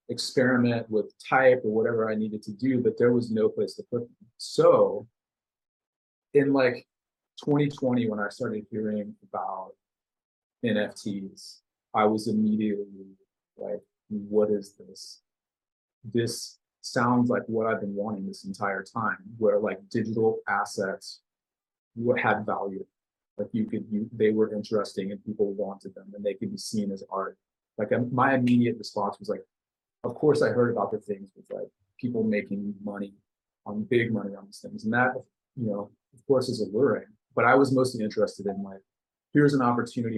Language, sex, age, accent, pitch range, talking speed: English, male, 30-49, American, 105-125 Hz, 165 wpm